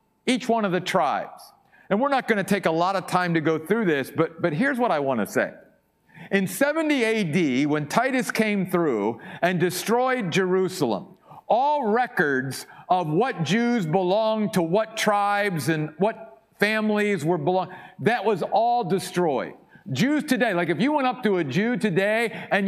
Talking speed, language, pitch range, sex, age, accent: 175 wpm, English, 165-220 Hz, male, 50-69, American